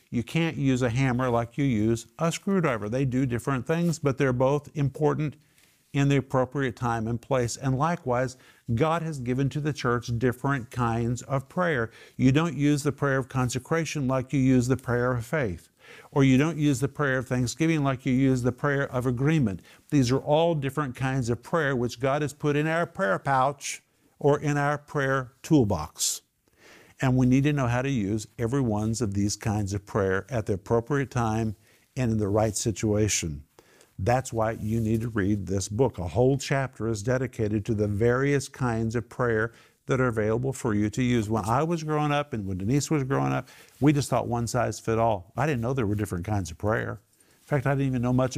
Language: English